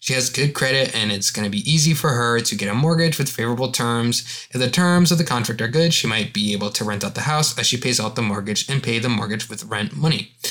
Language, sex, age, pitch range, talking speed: English, male, 20-39, 110-150 Hz, 275 wpm